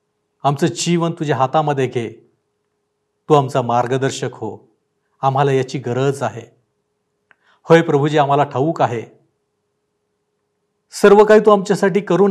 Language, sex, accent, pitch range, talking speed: Marathi, male, native, 125-165 Hz, 100 wpm